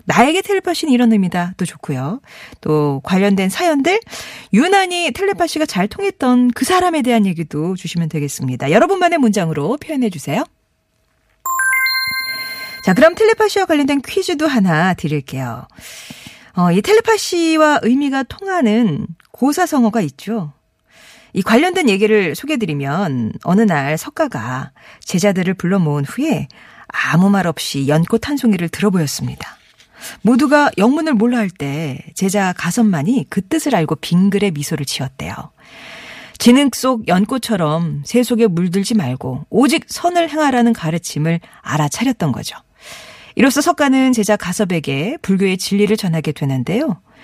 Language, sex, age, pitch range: Korean, female, 40-59, 165-270 Hz